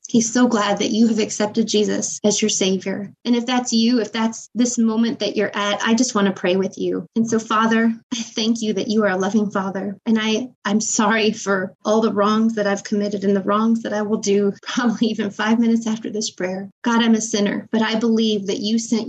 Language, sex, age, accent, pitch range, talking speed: English, female, 20-39, American, 205-230 Hz, 240 wpm